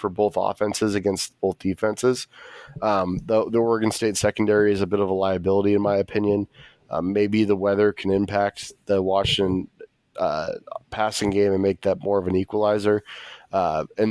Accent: American